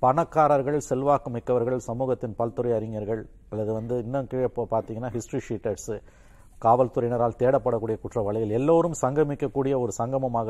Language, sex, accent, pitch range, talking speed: Tamil, male, native, 115-155 Hz, 115 wpm